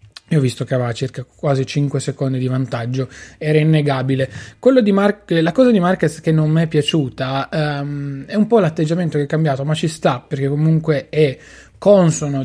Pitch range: 140-165 Hz